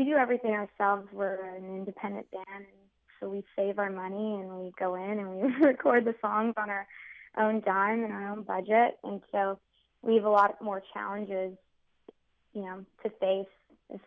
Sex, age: female, 20-39